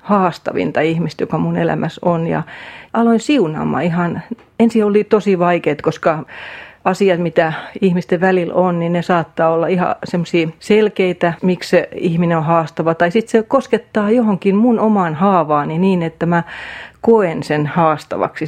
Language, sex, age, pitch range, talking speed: Finnish, female, 40-59, 165-210 Hz, 150 wpm